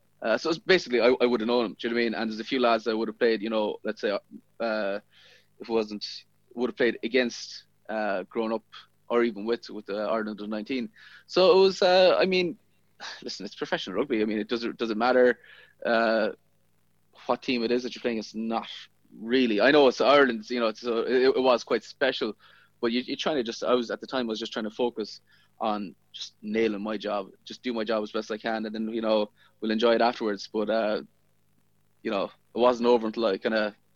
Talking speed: 240 wpm